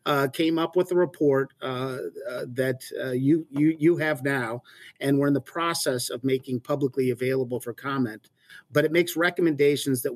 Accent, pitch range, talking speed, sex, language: American, 130-150 Hz, 185 wpm, male, English